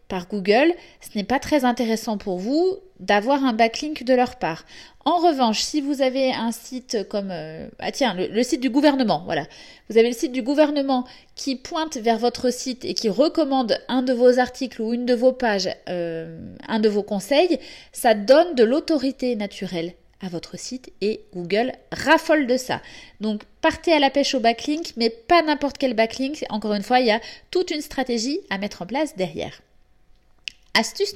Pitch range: 215-280 Hz